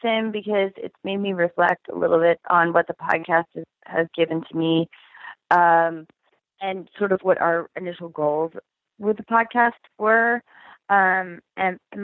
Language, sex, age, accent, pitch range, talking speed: English, female, 30-49, American, 165-190 Hz, 160 wpm